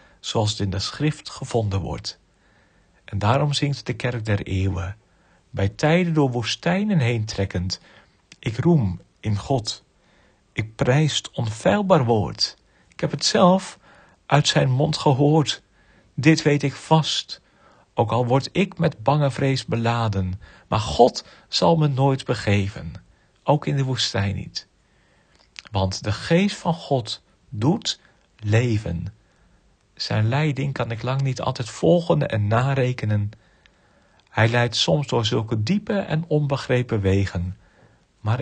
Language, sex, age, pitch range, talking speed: Dutch, male, 50-69, 100-145 Hz, 135 wpm